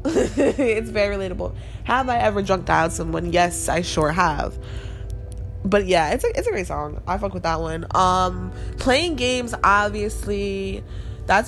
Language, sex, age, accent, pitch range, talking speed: English, female, 20-39, American, 160-215 Hz, 160 wpm